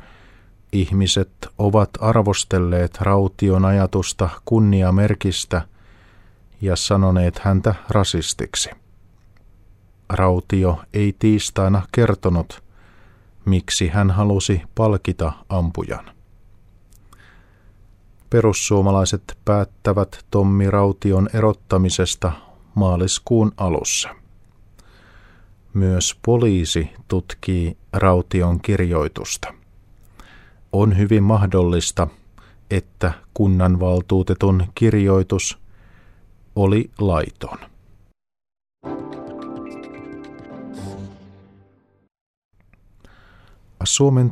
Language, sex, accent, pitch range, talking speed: Finnish, male, native, 90-105 Hz, 55 wpm